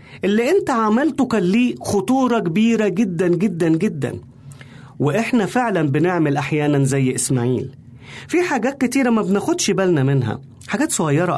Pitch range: 140-230 Hz